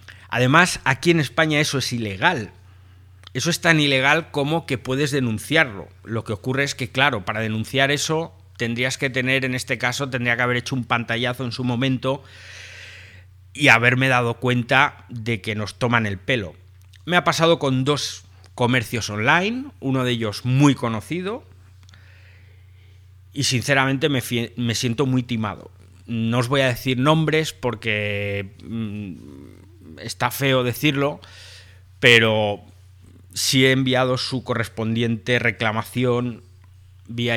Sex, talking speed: male, 140 wpm